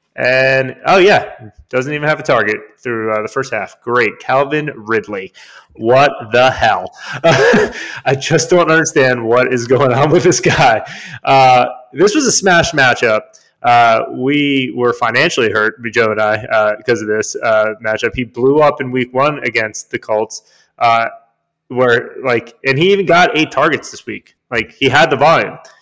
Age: 30-49